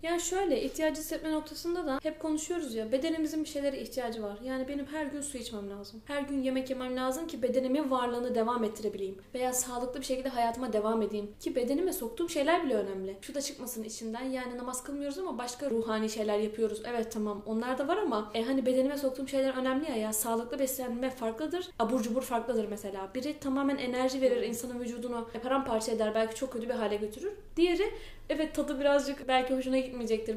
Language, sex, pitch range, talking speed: Turkish, female, 230-285 Hz, 195 wpm